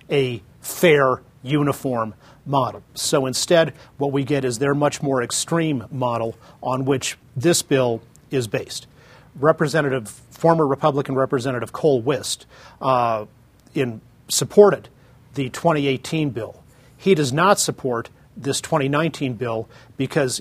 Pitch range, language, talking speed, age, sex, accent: 125-150 Hz, English, 120 wpm, 40-59, male, American